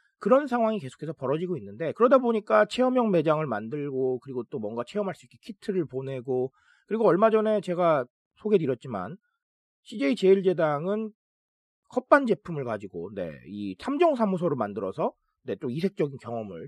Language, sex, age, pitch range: Korean, male, 30-49, 155-245 Hz